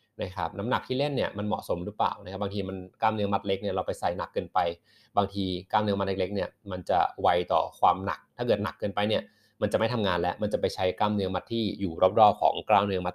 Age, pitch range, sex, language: 20-39, 95-115 Hz, male, Thai